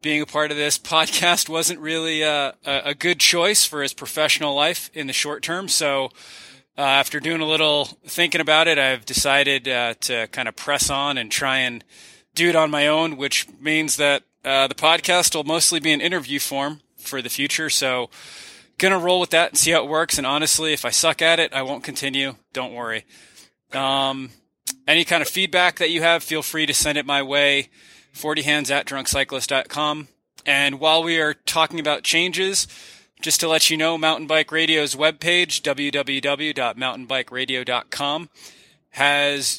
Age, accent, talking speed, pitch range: 20-39, American, 180 wpm, 140-160 Hz